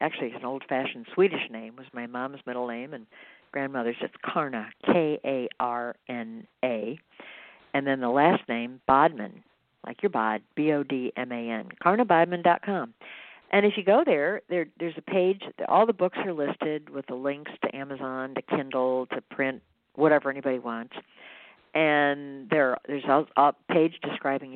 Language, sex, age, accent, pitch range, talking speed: English, female, 50-69, American, 125-165 Hz, 145 wpm